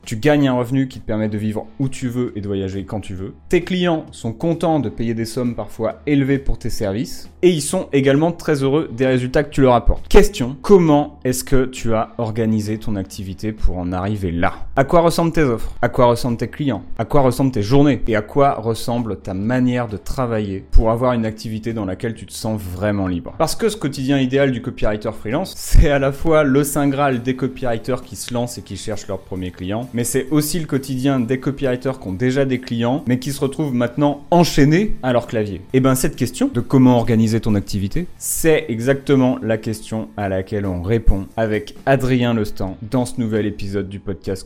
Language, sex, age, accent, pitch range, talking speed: French, male, 20-39, French, 105-140 Hz, 220 wpm